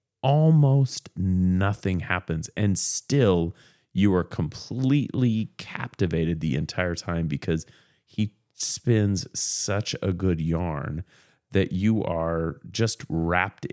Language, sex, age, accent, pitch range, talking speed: English, male, 30-49, American, 90-120 Hz, 105 wpm